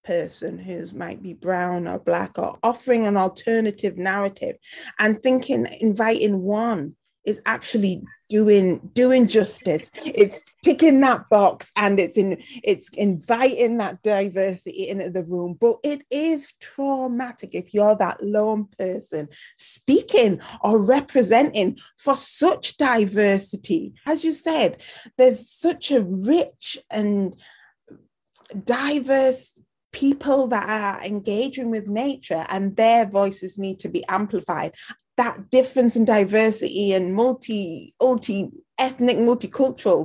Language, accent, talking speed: English, British, 120 wpm